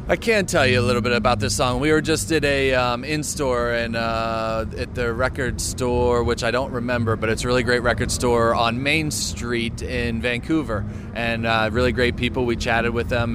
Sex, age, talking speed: male, 30-49, 215 wpm